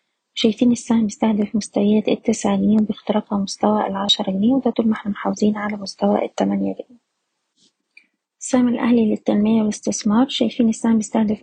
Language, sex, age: Arabic, female, 20-39